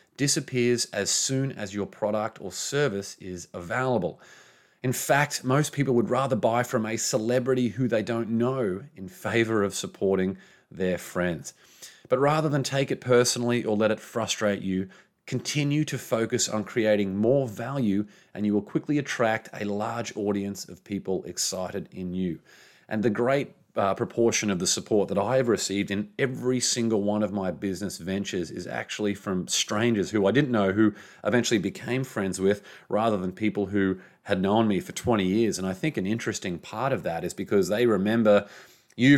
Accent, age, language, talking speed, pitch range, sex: Australian, 30-49, English, 180 wpm, 100-125 Hz, male